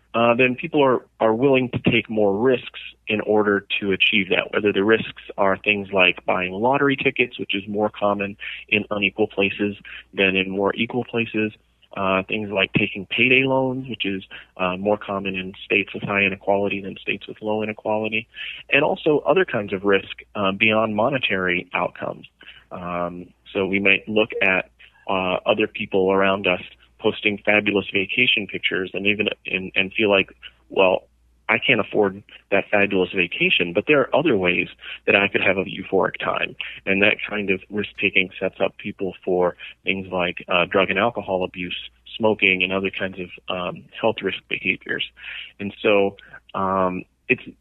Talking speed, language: 170 wpm, English